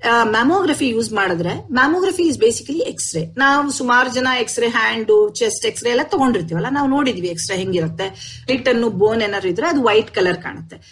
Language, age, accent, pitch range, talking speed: Kannada, 50-69, native, 185-295 Hz, 180 wpm